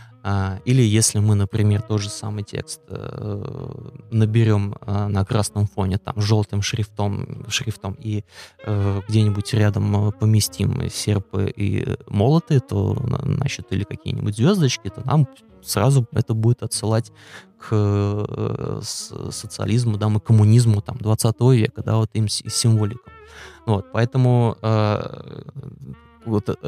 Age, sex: 20-39, male